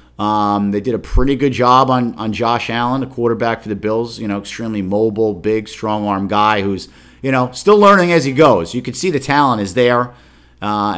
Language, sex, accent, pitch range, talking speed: English, male, American, 100-130 Hz, 215 wpm